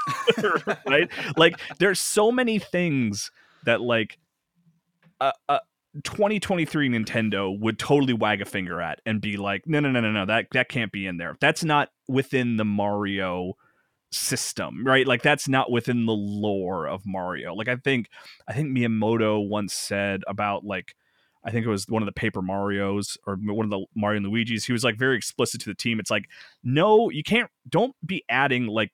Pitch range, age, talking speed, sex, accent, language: 105-145 Hz, 30-49, 185 wpm, male, American, English